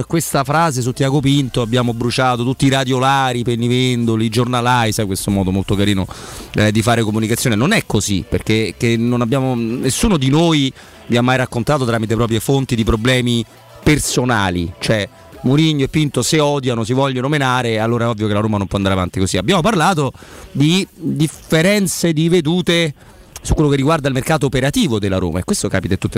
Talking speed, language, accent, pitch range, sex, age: 190 wpm, Italian, native, 110-140 Hz, male, 30-49